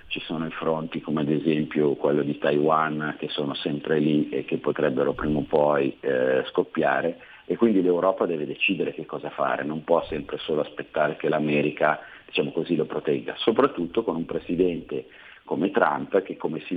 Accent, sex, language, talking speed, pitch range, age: native, male, Italian, 180 wpm, 80-95 Hz, 40-59